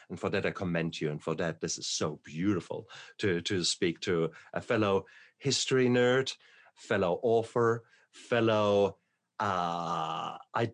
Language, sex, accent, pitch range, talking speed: English, male, German, 80-100 Hz, 145 wpm